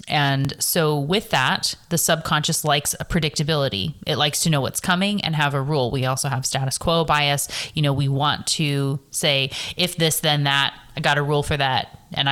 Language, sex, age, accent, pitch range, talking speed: English, female, 20-39, American, 135-160 Hz, 205 wpm